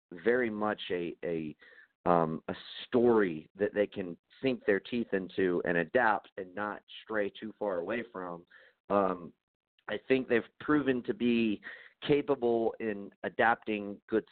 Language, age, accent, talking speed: English, 40-59, American, 145 wpm